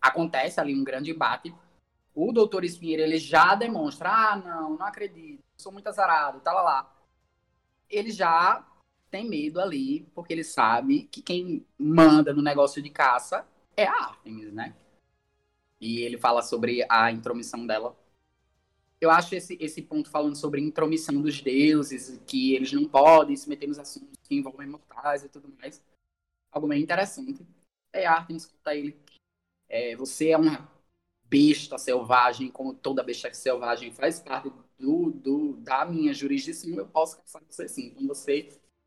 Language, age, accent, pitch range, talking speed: Portuguese, 20-39, Brazilian, 140-210 Hz, 155 wpm